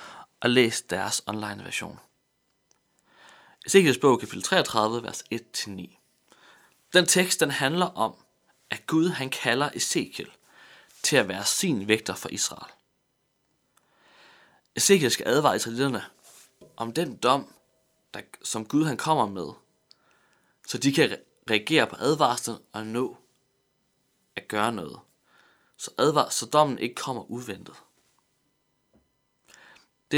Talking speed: 120 wpm